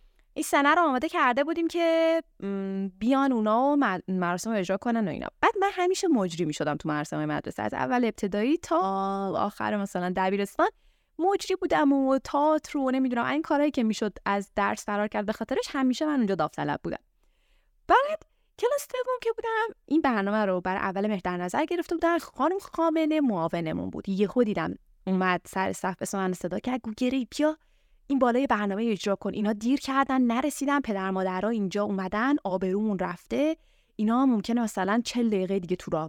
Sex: female